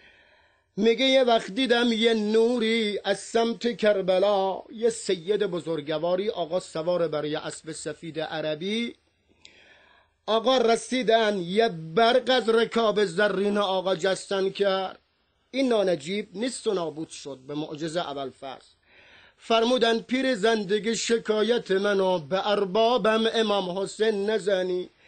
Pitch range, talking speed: 185-230 Hz, 115 wpm